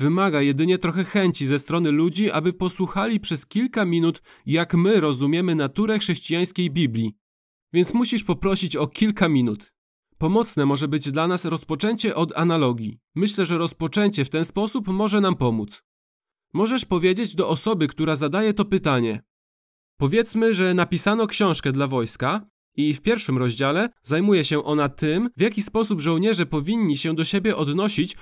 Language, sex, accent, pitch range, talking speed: Polish, male, native, 150-205 Hz, 155 wpm